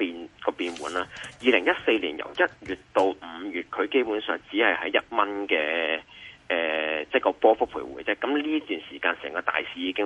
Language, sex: Chinese, male